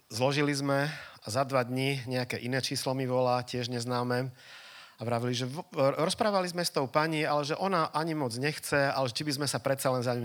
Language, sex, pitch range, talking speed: Czech, male, 115-135 Hz, 210 wpm